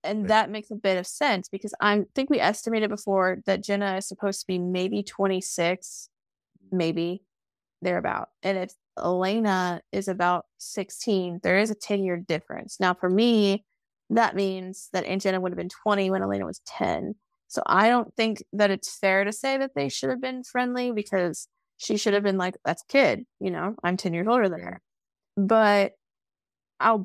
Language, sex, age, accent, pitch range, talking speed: English, female, 20-39, American, 185-220 Hz, 185 wpm